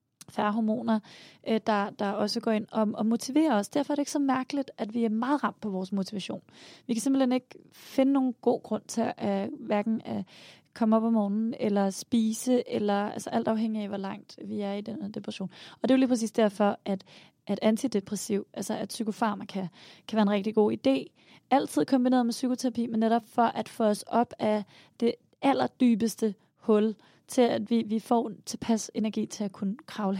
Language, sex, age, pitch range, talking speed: Danish, female, 20-39, 210-240 Hz, 200 wpm